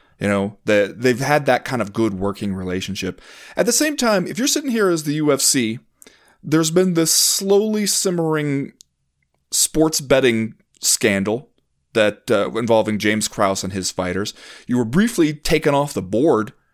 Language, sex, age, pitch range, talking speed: English, male, 30-49, 110-165 Hz, 160 wpm